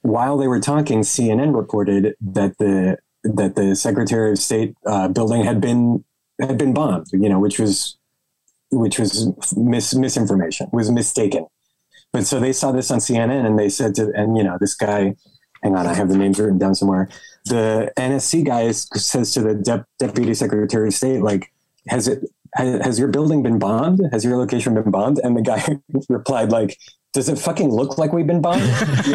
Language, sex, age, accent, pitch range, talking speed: English, male, 30-49, American, 105-140 Hz, 190 wpm